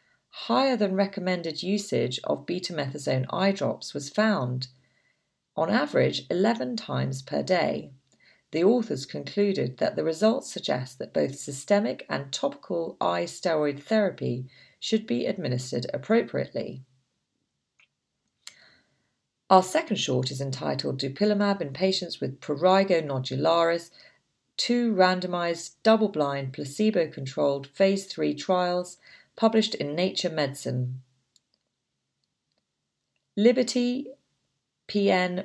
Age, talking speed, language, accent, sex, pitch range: 40-59, 95 wpm, English, British, female, 140-200 Hz